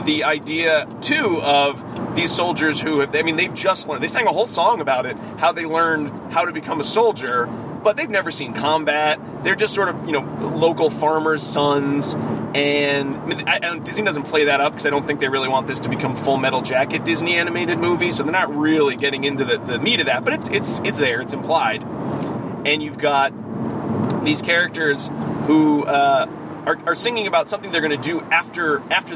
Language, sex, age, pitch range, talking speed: English, male, 30-49, 145-175 Hz, 215 wpm